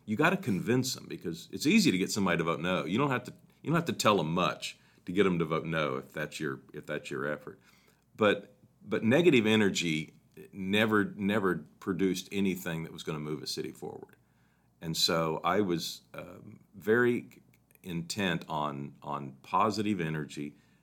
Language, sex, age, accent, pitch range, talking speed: English, male, 50-69, American, 75-100 Hz, 185 wpm